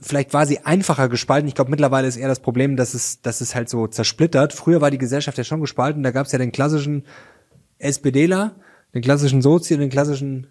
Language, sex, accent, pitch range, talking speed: German, male, German, 125-155 Hz, 225 wpm